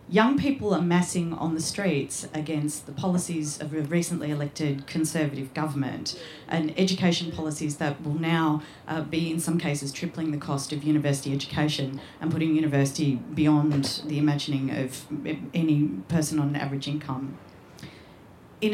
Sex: female